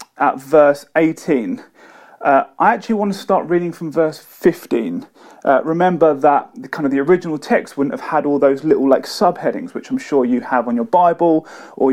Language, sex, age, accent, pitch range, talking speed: English, male, 30-49, British, 140-205 Hz, 195 wpm